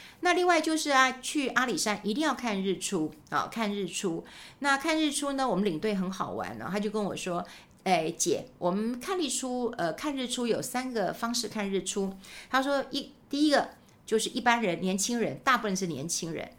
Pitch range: 180-245 Hz